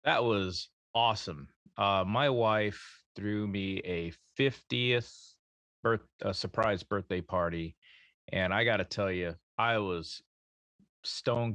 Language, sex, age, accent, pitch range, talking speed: English, male, 30-49, American, 95-115 Hz, 125 wpm